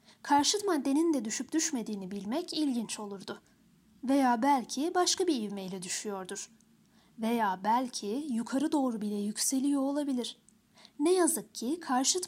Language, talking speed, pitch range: Turkish, 120 wpm, 215-305 Hz